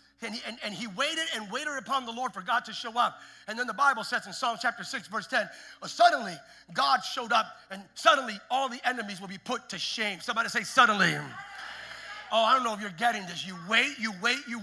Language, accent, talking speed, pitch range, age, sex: English, American, 235 wpm, 215-275 Hz, 40-59, male